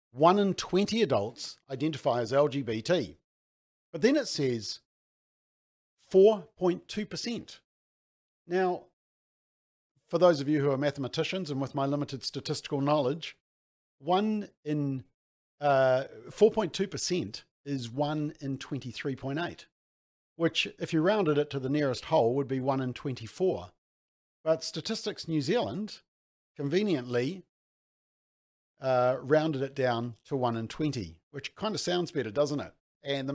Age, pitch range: 50-69, 125-160 Hz